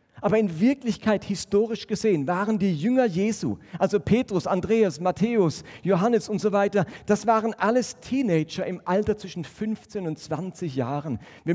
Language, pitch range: German, 140-200 Hz